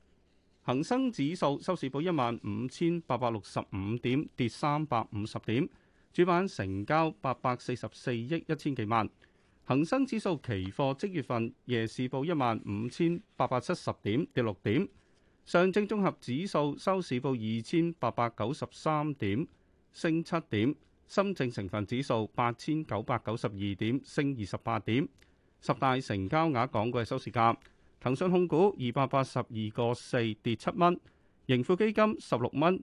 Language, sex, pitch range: Chinese, male, 110-150 Hz